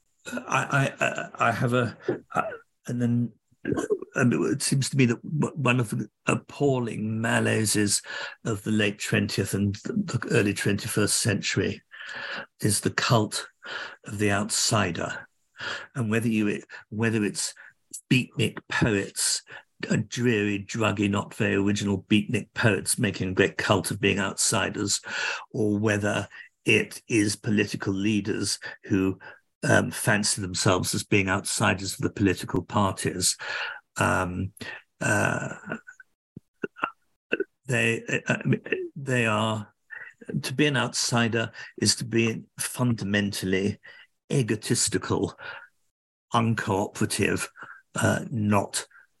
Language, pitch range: English, 100-120 Hz